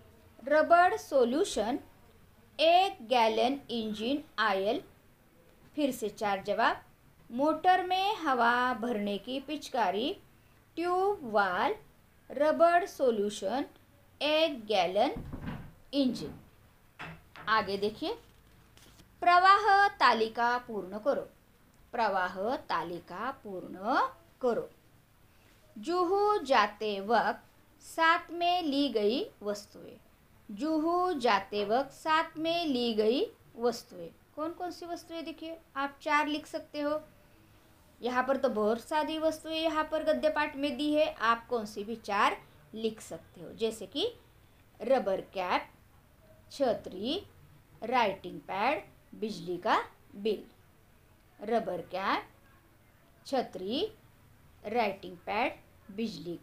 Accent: native